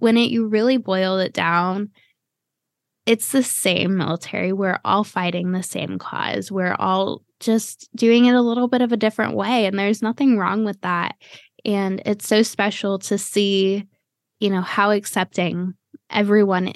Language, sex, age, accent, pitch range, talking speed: English, female, 10-29, American, 195-230 Hz, 165 wpm